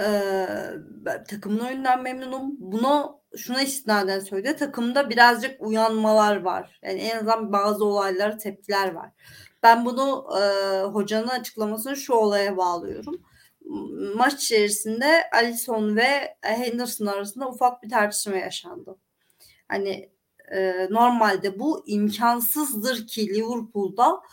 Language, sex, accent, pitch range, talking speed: Turkish, female, native, 210-265 Hz, 110 wpm